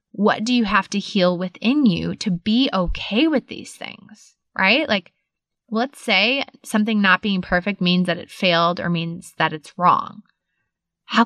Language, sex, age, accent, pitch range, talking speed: English, female, 20-39, American, 180-235 Hz, 170 wpm